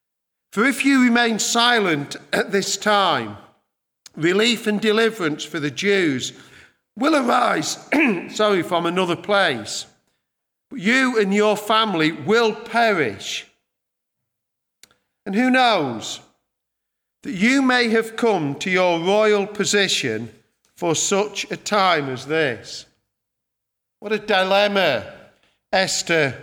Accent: British